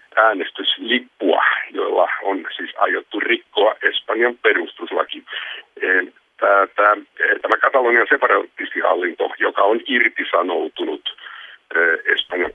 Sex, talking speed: male, 70 wpm